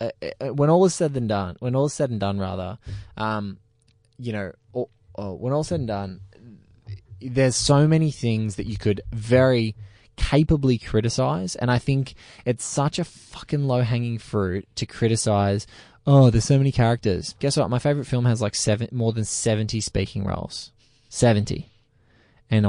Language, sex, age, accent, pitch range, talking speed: English, male, 20-39, Australian, 110-140 Hz, 165 wpm